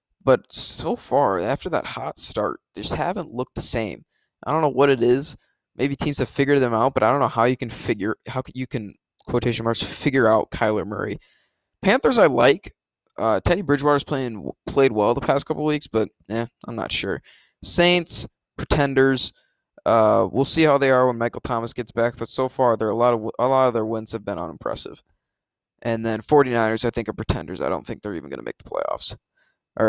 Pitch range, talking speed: 110-130 Hz, 210 wpm